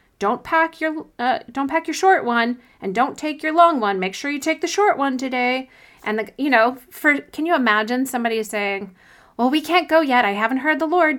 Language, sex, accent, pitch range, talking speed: English, female, American, 205-285 Hz, 230 wpm